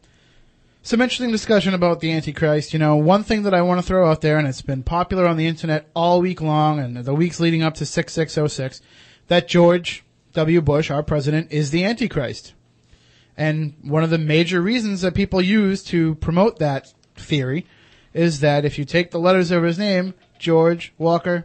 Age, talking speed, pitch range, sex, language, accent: 30-49, 190 wpm, 145-185 Hz, male, English, American